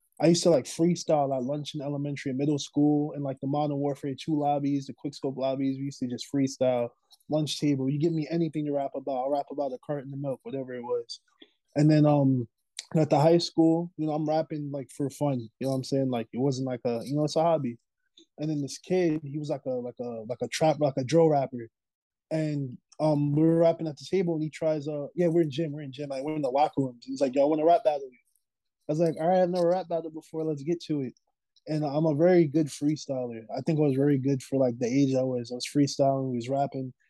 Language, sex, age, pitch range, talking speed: English, male, 20-39, 135-160 Hz, 265 wpm